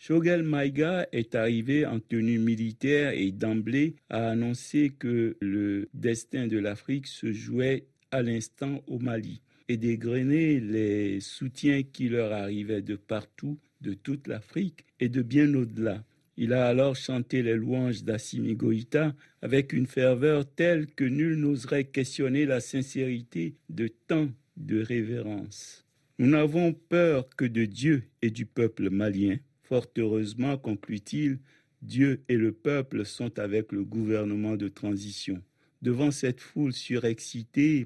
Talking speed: 140 wpm